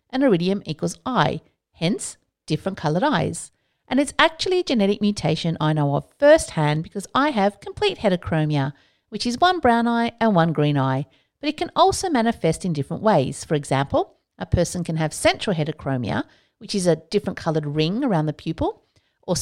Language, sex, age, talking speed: English, female, 50-69, 180 wpm